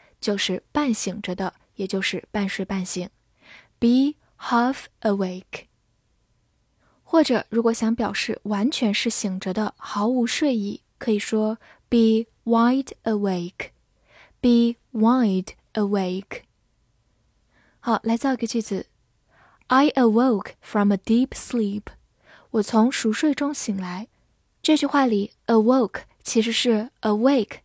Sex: female